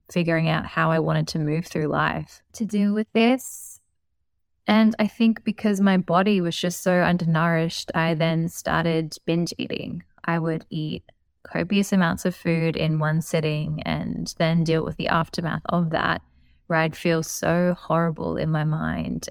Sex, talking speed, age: female, 170 wpm, 20-39